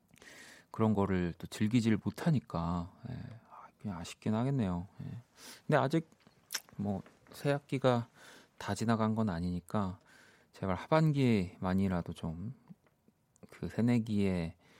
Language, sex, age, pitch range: Korean, male, 30-49, 100-135 Hz